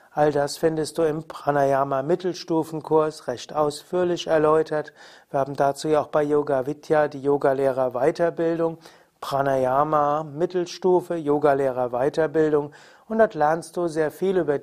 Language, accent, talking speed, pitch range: German, German, 125 wpm, 140-170 Hz